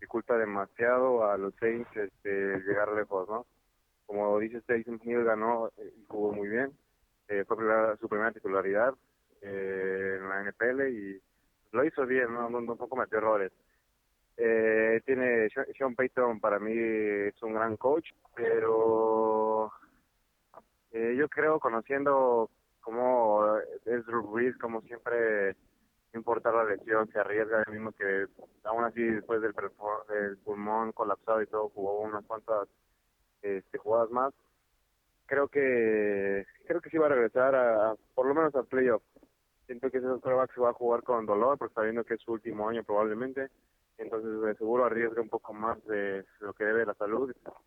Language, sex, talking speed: Spanish, male, 165 wpm